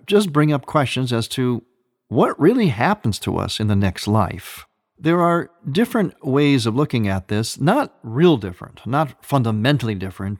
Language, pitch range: English, 110-160 Hz